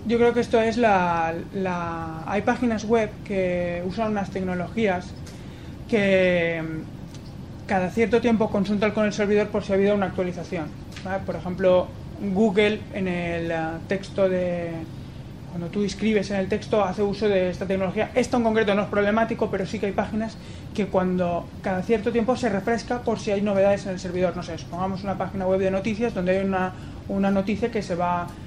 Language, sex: Spanish, male